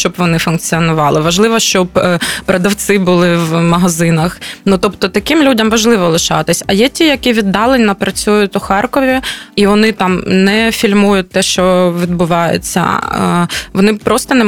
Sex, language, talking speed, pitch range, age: female, Ukrainian, 140 wpm, 180-215 Hz, 20-39